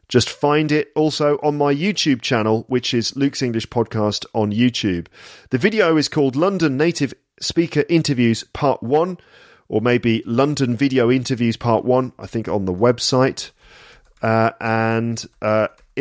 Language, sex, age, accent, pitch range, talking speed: English, male, 40-59, British, 110-150 Hz, 150 wpm